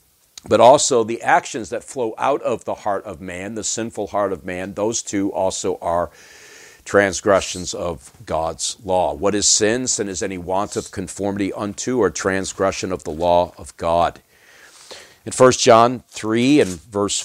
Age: 50-69